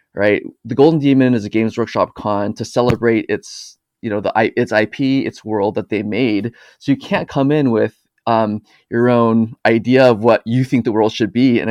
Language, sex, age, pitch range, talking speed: English, male, 20-39, 110-130 Hz, 210 wpm